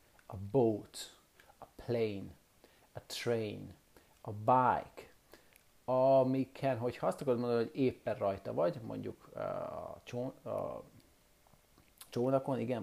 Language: English